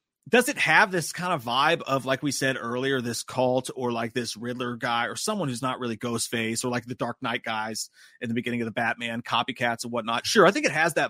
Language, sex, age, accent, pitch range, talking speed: English, male, 30-49, American, 120-180 Hz, 250 wpm